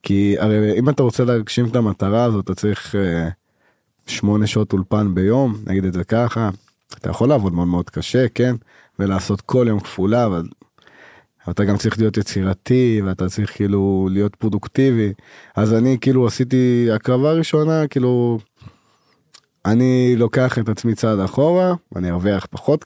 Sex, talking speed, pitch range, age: male, 150 wpm, 100-130 Hz, 20-39